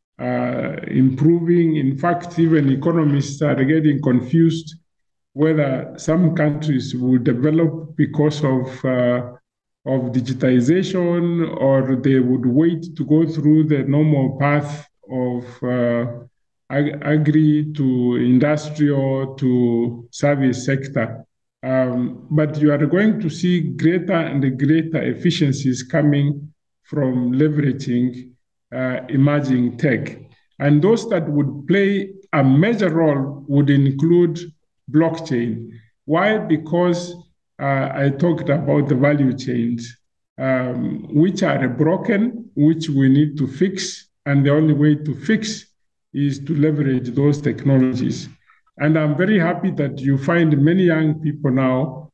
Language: English